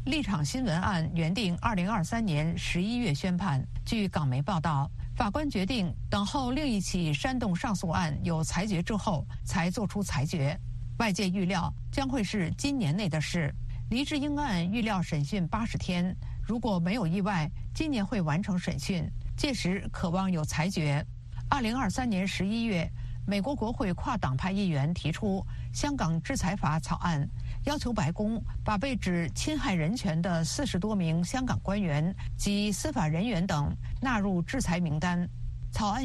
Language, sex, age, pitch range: Chinese, female, 50-69, 150-205 Hz